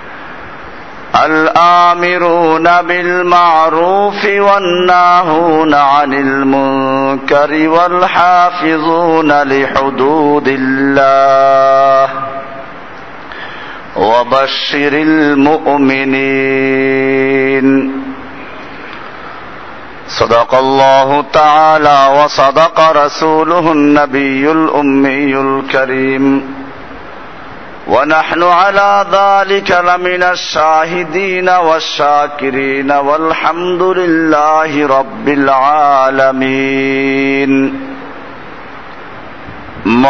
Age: 50-69